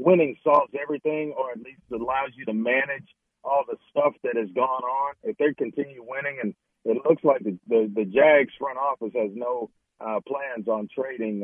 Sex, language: male, English